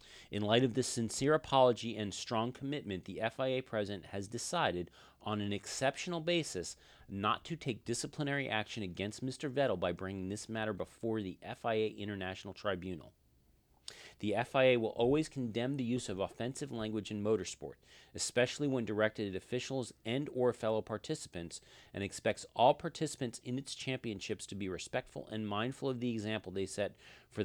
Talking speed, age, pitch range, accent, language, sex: 160 wpm, 40-59, 95-130 Hz, American, English, male